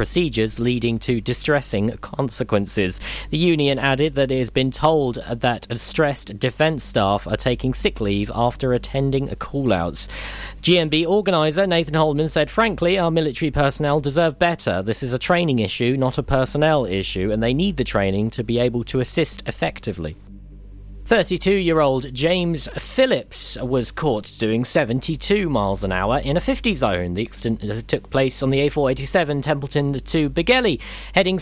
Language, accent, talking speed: English, British, 155 wpm